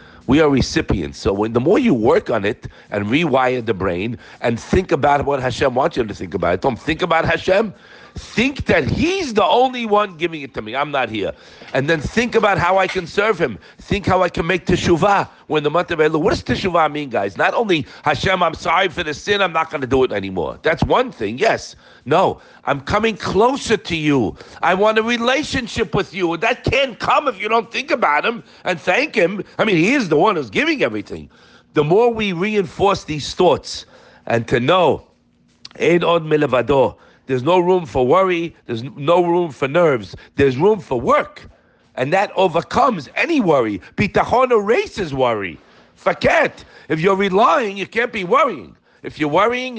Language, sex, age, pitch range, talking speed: English, male, 50-69, 135-205 Hz, 200 wpm